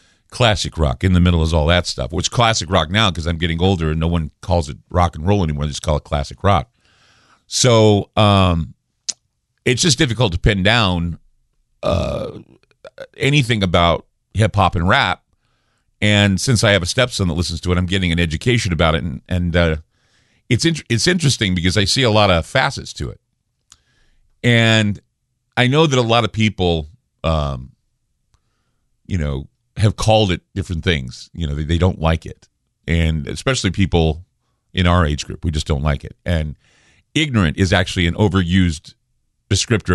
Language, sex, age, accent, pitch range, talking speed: English, male, 50-69, American, 85-110 Hz, 180 wpm